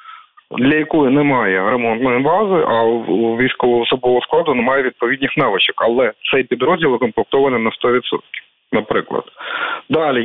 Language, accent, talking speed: Ukrainian, native, 115 wpm